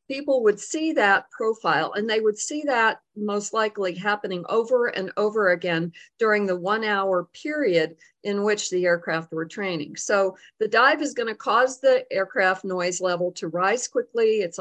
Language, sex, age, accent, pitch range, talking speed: English, female, 50-69, American, 170-215 Hz, 175 wpm